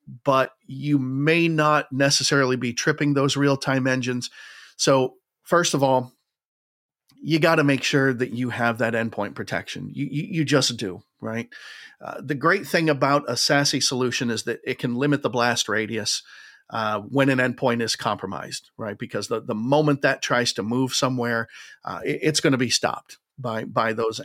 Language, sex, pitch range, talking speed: English, male, 120-145 Hz, 180 wpm